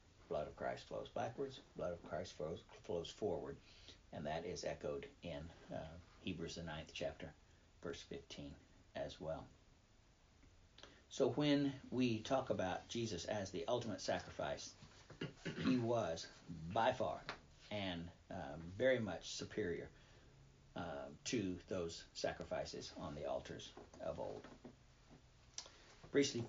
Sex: male